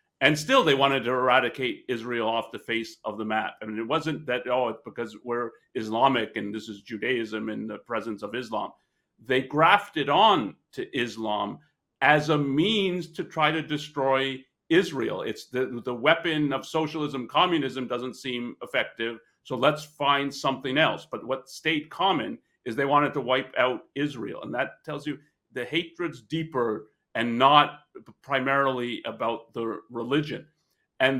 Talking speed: 165 wpm